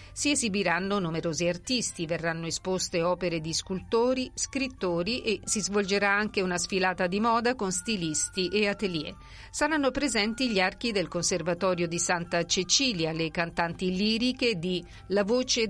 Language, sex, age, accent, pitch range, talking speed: Italian, female, 50-69, native, 175-220 Hz, 140 wpm